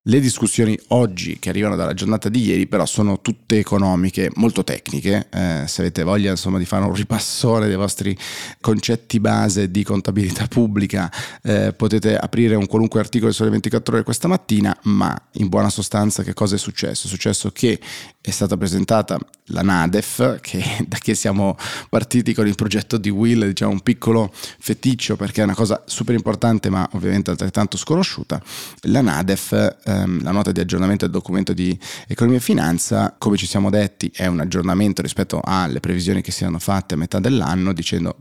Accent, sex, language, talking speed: native, male, Italian, 175 wpm